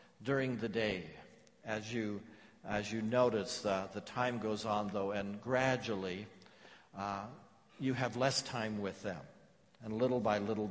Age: 60-79